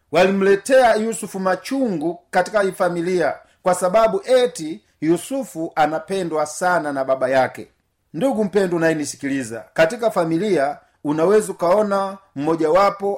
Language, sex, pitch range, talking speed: Swahili, male, 155-195 Hz, 105 wpm